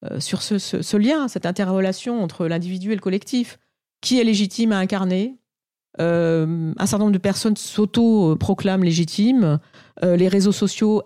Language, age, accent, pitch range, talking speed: French, 40-59, French, 175-220 Hz, 165 wpm